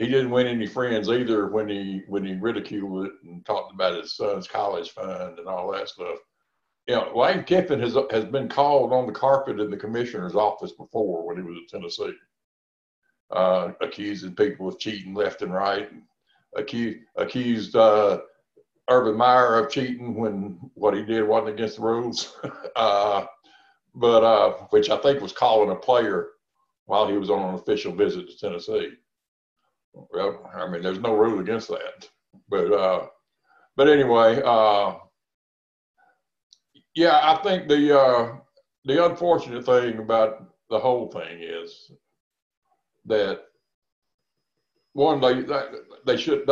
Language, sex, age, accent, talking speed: English, male, 60-79, American, 155 wpm